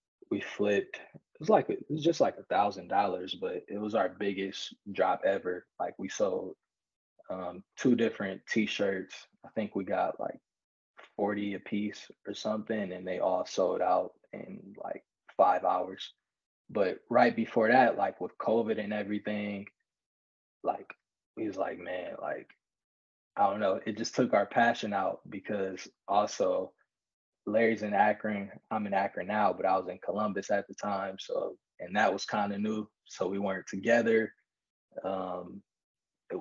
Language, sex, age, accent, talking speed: English, male, 20-39, American, 165 wpm